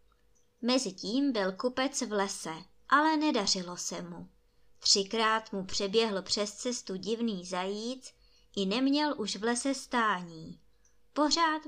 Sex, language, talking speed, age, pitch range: male, Czech, 120 wpm, 20-39, 195-270 Hz